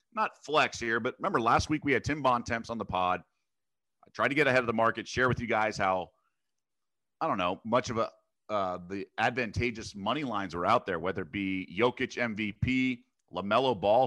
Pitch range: 105-125 Hz